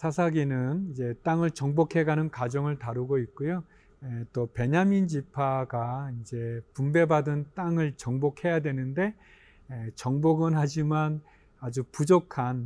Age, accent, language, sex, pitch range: 40-59, native, Korean, male, 125-165 Hz